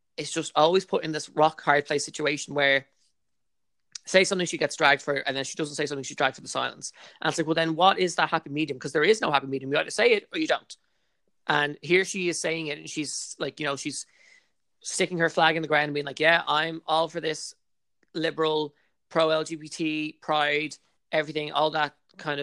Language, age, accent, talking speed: English, 20-39, Irish, 230 wpm